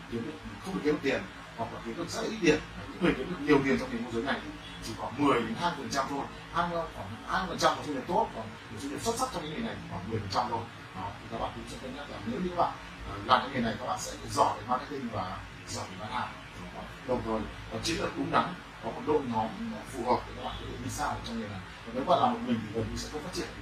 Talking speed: 240 wpm